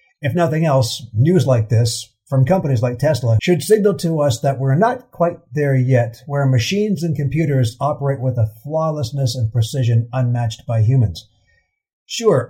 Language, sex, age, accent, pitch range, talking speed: English, male, 50-69, American, 115-160 Hz, 165 wpm